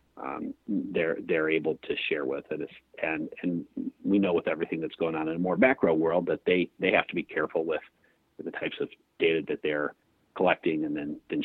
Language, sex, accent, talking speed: English, male, American, 215 wpm